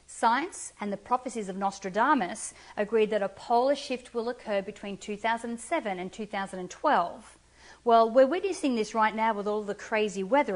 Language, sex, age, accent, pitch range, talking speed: English, female, 40-59, Australian, 195-245 Hz, 160 wpm